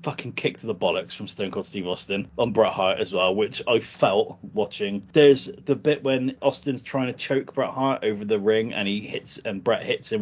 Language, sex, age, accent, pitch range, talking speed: English, male, 30-49, British, 105-155 Hz, 230 wpm